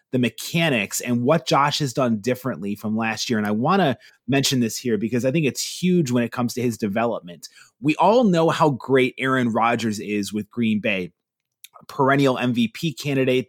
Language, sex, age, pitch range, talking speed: English, male, 30-49, 120-150 Hz, 195 wpm